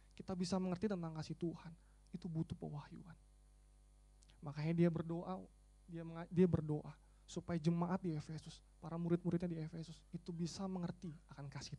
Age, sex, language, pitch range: 20-39, male, Indonesian, 155-190 Hz